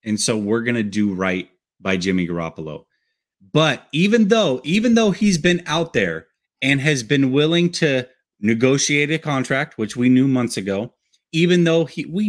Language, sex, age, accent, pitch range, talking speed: English, male, 30-49, American, 105-165 Hz, 170 wpm